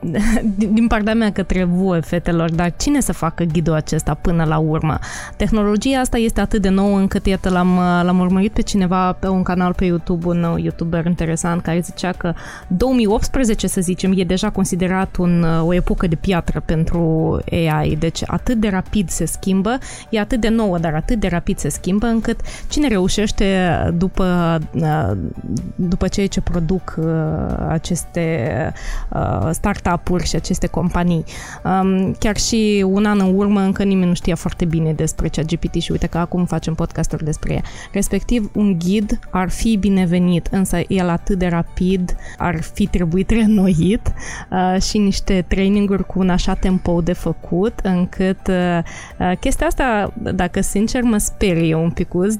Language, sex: Romanian, female